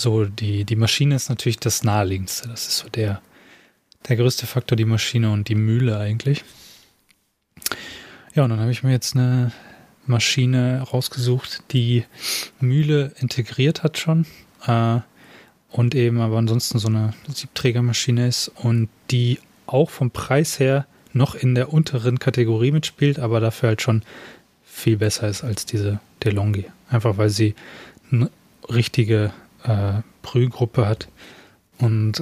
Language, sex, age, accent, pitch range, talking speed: German, male, 20-39, German, 105-125 Hz, 140 wpm